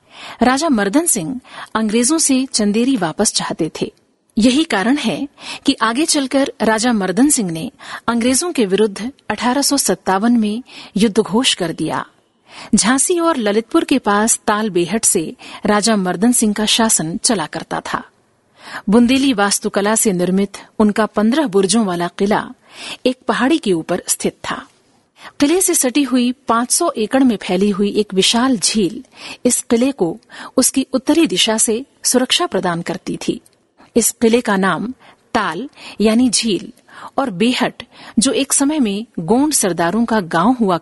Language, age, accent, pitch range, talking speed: Hindi, 50-69, native, 205-260 Hz, 145 wpm